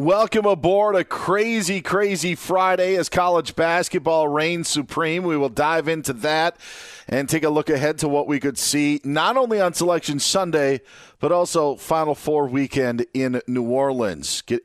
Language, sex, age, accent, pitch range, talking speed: English, male, 40-59, American, 110-150 Hz, 165 wpm